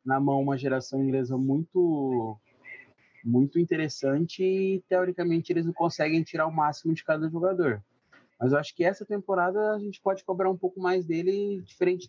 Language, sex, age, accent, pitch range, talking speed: Portuguese, male, 20-39, Brazilian, 125-175 Hz, 170 wpm